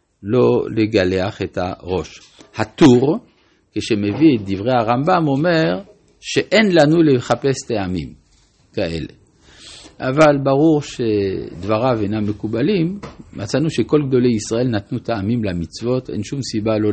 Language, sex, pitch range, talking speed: Hebrew, male, 105-145 Hz, 110 wpm